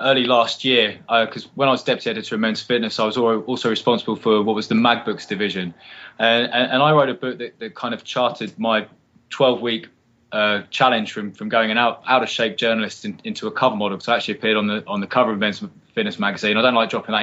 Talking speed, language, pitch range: 245 wpm, English, 115-170 Hz